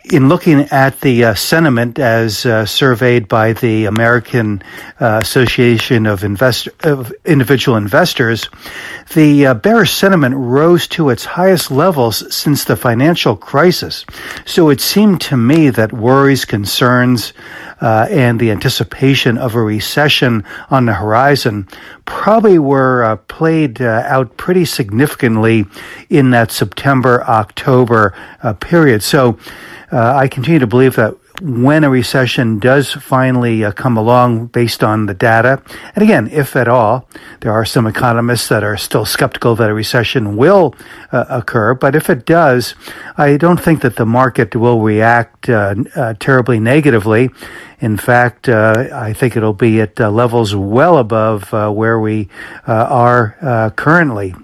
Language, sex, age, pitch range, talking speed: English, male, 60-79, 110-140 Hz, 150 wpm